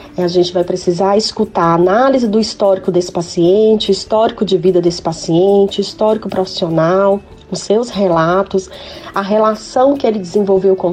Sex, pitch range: female, 180-210 Hz